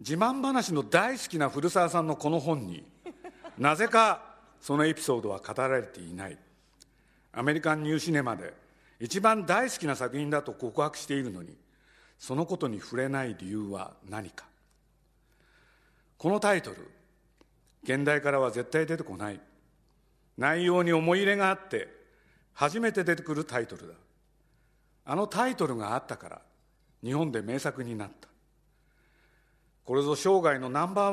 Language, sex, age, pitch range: Japanese, male, 50-69, 130-185 Hz